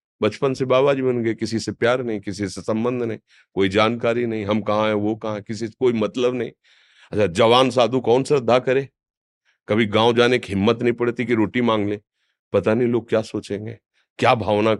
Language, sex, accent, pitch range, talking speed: Hindi, male, native, 105-175 Hz, 210 wpm